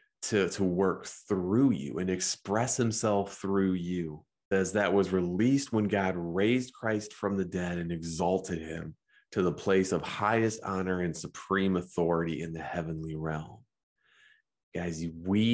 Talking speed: 150 wpm